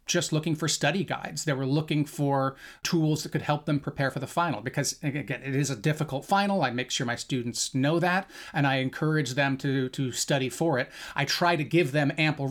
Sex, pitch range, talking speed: male, 135-155 Hz, 225 wpm